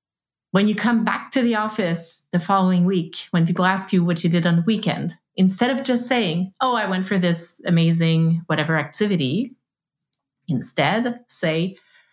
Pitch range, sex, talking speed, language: 170-220 Hz, female, 170 wpm, English